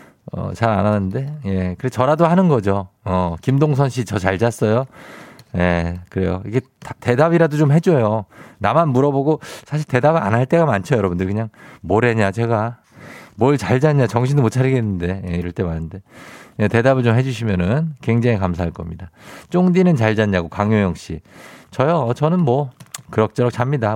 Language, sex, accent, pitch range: Korean, male, native, 105-150 Hz